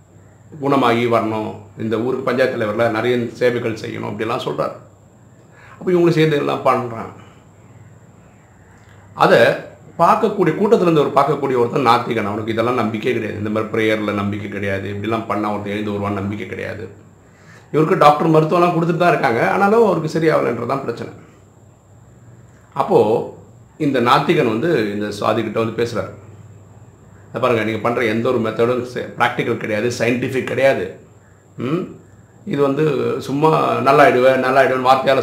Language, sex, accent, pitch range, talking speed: Tamil, male, native, 105-140 Hz, 120 wpm